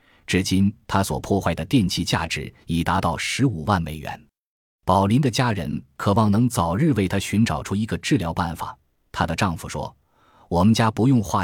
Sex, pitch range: male, 85-115 Hz